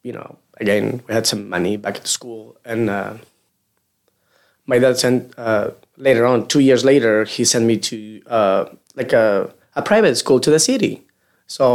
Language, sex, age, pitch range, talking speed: English, male, 20-39, 110-130 Hz, 185 wpm